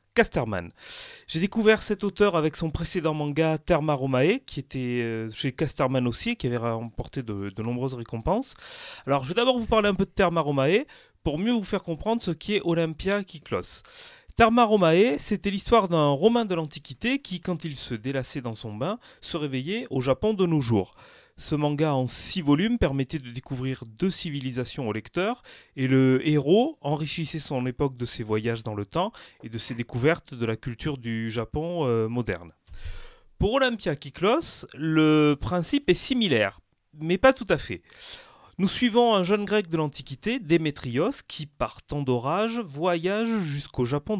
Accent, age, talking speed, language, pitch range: French, 30-49, 170 wpm, French, 130-195 Hz